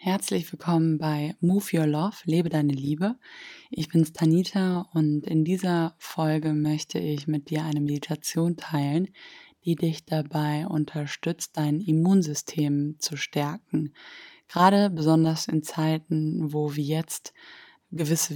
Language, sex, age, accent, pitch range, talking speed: German, female, 20-39, German, 150-170 Hz, 130 wpm